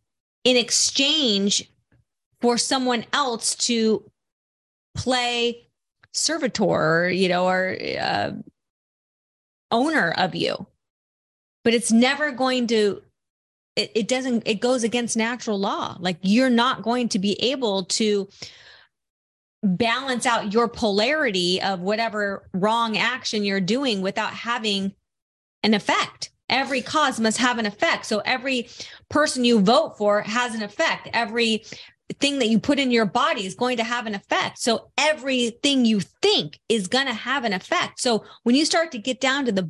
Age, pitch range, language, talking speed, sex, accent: 30-49, 200-255 Hz, English, 150 wpm, female, American